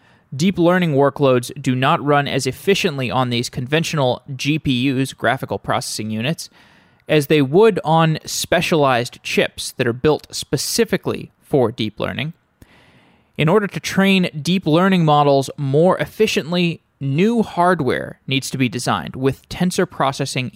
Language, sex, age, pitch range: English, male, 20-39, 130-165 Hz